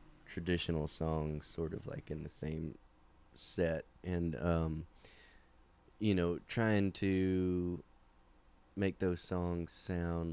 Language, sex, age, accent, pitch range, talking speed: English, male, 20-39, American, 80-95 Hz, 110 wpm